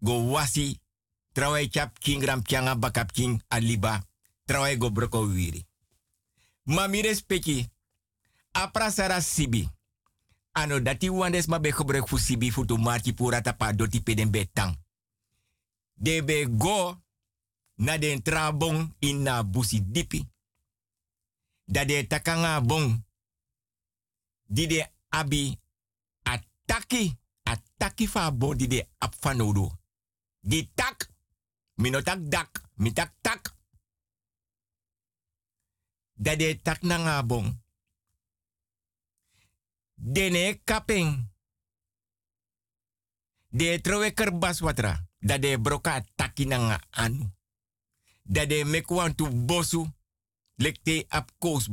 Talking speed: 90 wpm